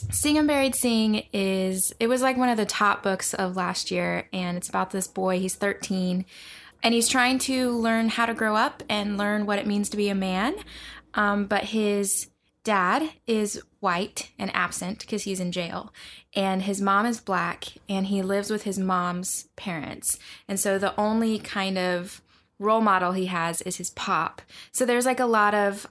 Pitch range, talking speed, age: 185-235 Hz, 195 wpm, 20-39